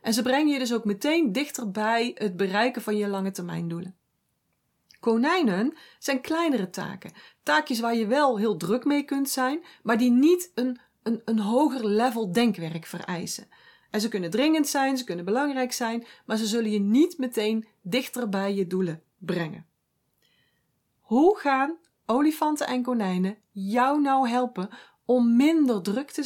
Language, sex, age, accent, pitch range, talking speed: Dutch, female, 40-59, Dutch, 215-275 Hz, 160 wpm